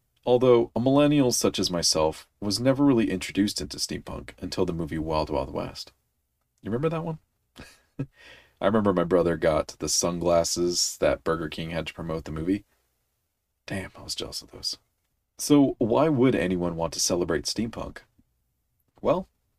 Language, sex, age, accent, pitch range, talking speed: English, male, 40-59, American, 85-115 Hz, 160 wpm